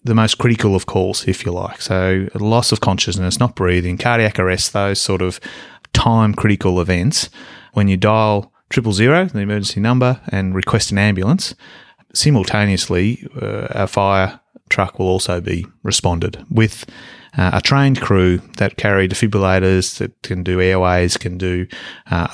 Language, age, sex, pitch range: English, 30-49, male, 95-115 Hz